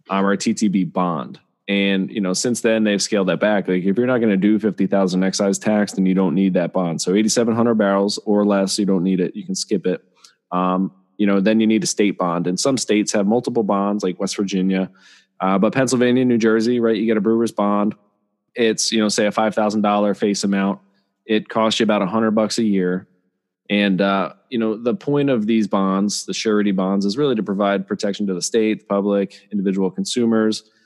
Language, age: English, 20-39